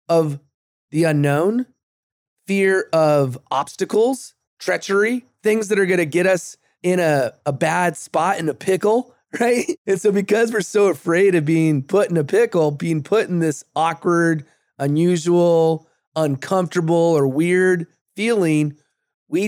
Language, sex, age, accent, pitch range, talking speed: English, male, 30-49, American, 150-190 Hz, 140 wpm